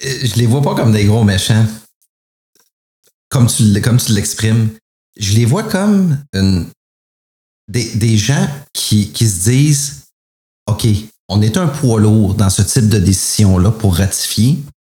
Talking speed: 155 wpm